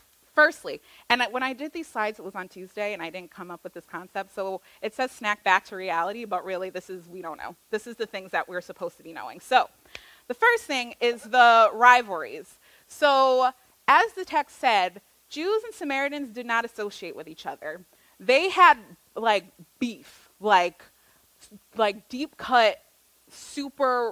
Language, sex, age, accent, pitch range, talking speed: English, female, 20-39, American, 195-255 Hz, 180 wpm